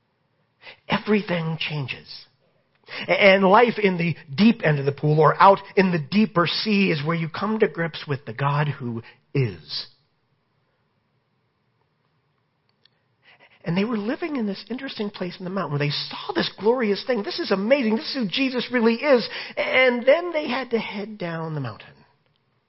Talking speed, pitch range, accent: 165 wpm, 150-215 Hz, American